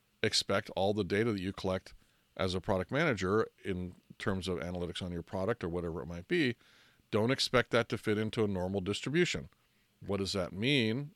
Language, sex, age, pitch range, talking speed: English, male, 40-59, 90-115 Hz, 195 wpm